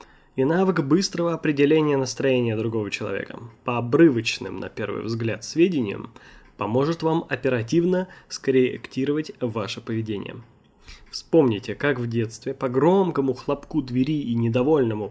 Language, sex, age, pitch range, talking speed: Russian, male, 20-39, 120-170 Hz, 115 wpm